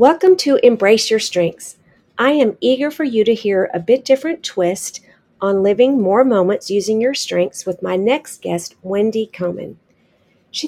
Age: 40-59